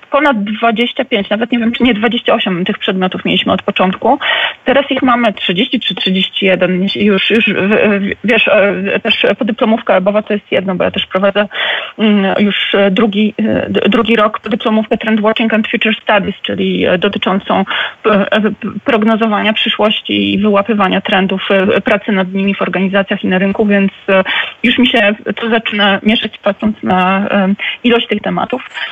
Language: Polish